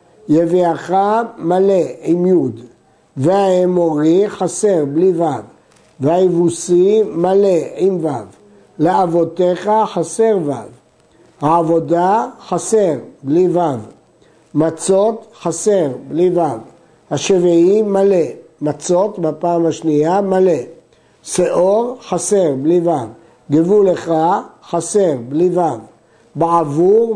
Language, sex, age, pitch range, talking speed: Hebrew, male, 60-79, 160-195 Hz, 85 wpm